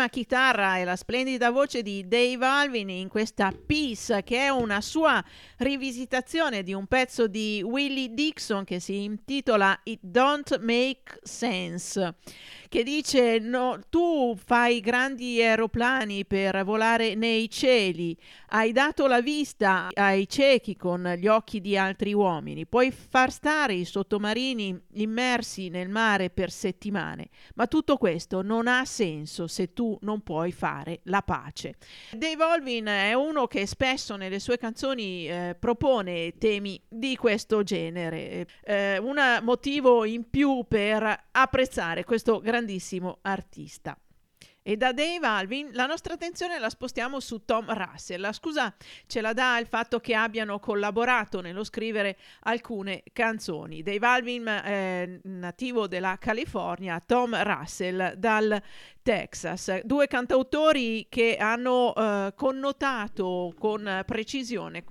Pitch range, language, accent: 195-255 Hz, Italian, native